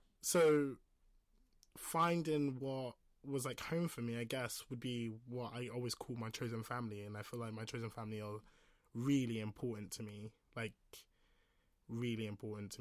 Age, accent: 20-39, British